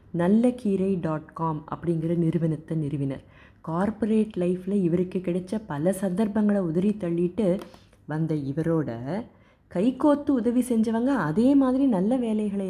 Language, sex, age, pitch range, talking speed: Tamil, female, 30-49, 155-210 Hz, 115 wpm